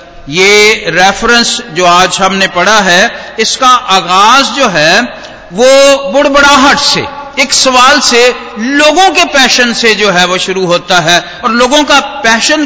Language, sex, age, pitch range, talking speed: Hindi, male, 50-69, 180-260 Hz, 145 wpm